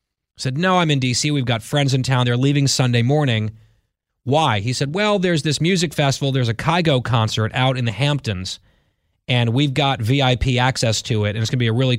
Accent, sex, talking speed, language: American, male, 220 wpm, English